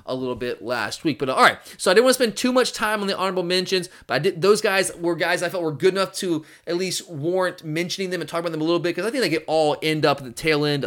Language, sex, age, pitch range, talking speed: English, male, 20-39, 145-190 Hz, 325 wpm